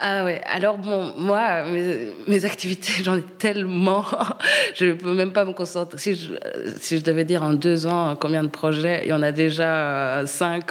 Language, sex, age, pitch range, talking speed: French, female, 20-39, 155-185 Hz, 200 wpm